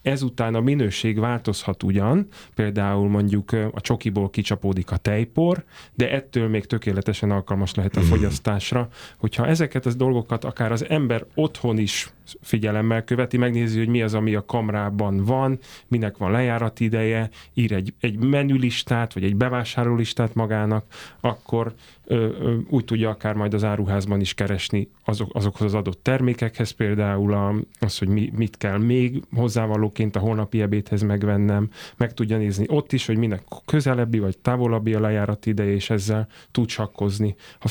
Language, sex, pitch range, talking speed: Hungarian, male, 105-120 Hz, 155 wpm